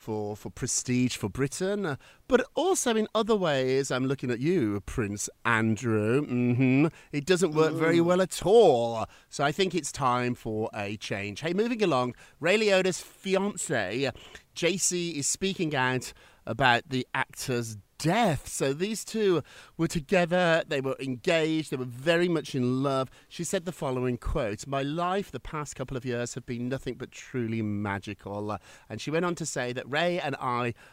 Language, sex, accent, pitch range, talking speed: English, male, British, 120-175 Hz, 170 wpm